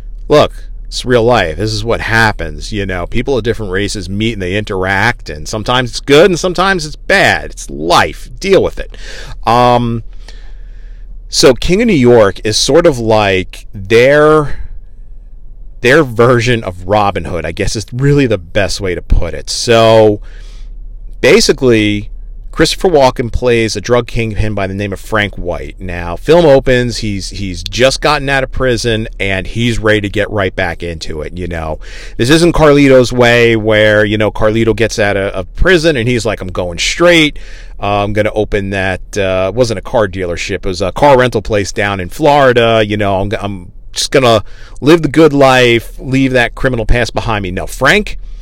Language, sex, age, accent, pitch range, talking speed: English, male, 40-59, American, 100-120 Hz, 185 wpm